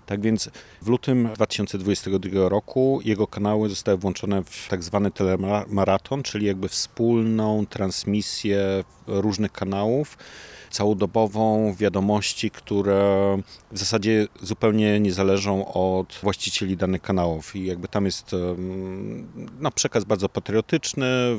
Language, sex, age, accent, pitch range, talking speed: Polish, male, 40-59, native, 95-115 Hz, 115 wpm